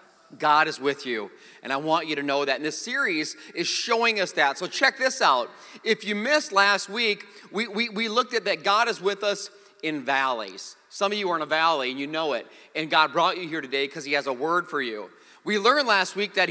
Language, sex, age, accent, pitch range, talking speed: English, male, 30-49, American, 150-230 Hz, 245 wpm